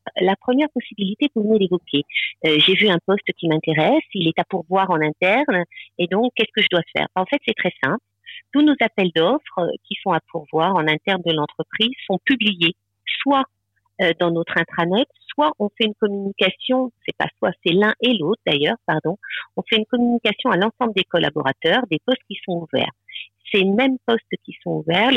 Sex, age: female, 50-69